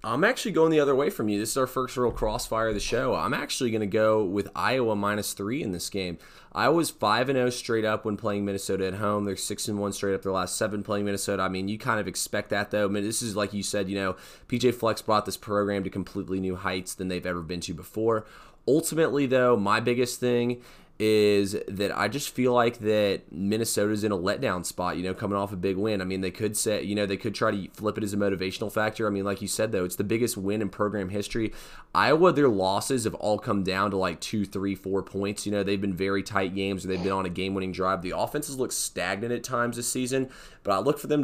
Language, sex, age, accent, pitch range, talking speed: English, male, 20-39, American, 95-110 Hz, 260 wpm